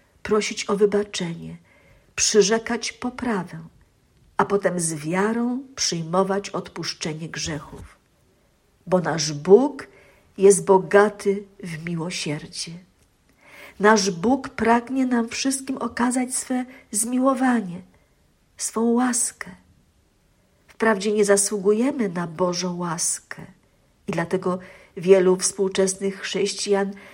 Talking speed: 90 wpm